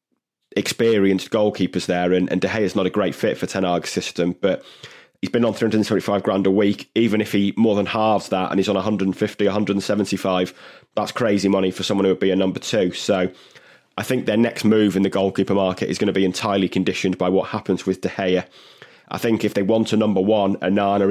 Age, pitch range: 20-39, 95-105 Hz